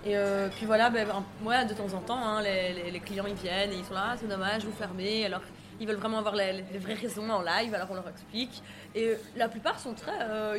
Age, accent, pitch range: 20-39, French, 195-230 Hz